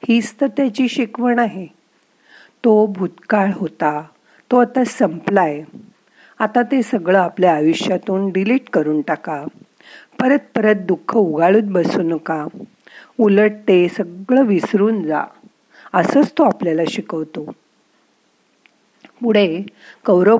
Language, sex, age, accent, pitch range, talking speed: Marathi, female, 50-69, native, 175-230 Hz, 80 wpm